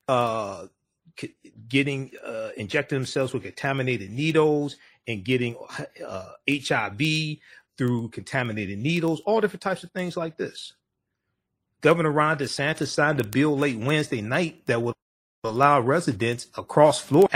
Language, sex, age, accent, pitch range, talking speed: English, male, 40-59, American, 125-155 Hz, 130 wpm